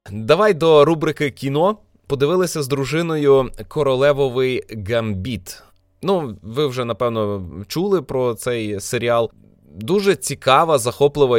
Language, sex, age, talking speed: Ukrainian, male, 20-39, 105 wpm